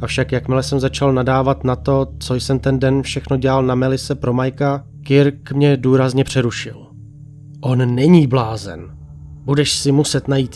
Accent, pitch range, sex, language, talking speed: native, 120-140 Hz, male, Czech, 165 wpm